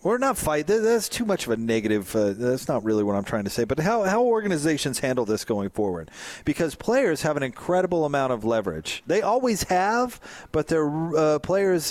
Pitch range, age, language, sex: 120-170 Hz, 40-59, English, male